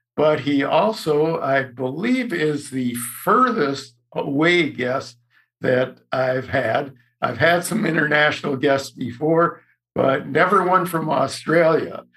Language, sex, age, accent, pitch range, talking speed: English, male, 60-79, American, 130-160 Hz, 120 wpm